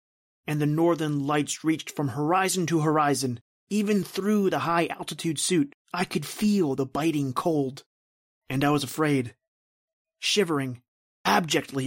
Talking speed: 130 wpm